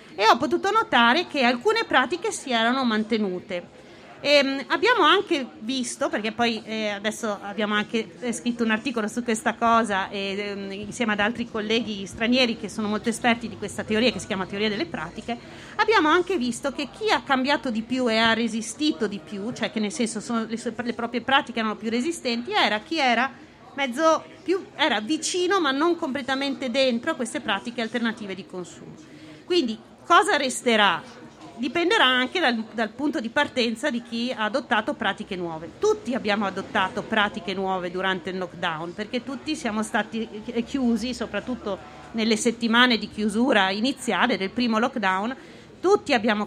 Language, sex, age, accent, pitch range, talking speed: Italian, female, 30-49, native, 205-260 Hz, 165 wpm